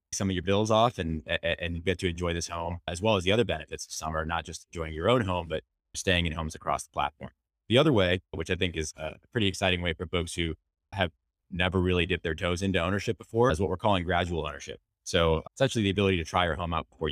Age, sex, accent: 20-39, male, American